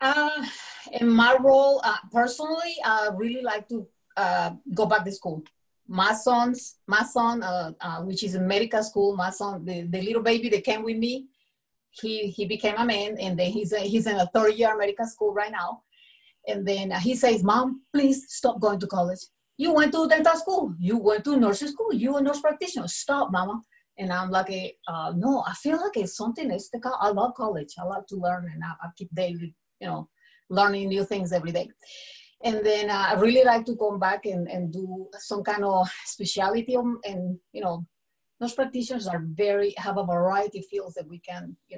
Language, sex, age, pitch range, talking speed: English, female, 30-49, 185-235 Hz, 210 wpm